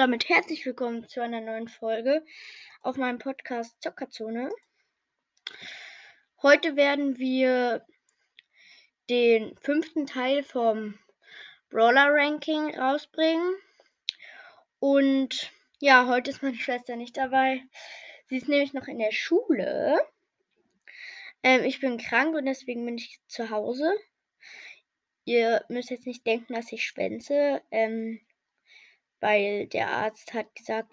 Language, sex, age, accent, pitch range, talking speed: German, female, 10-29, German, 225-285 Hz, 115 wpm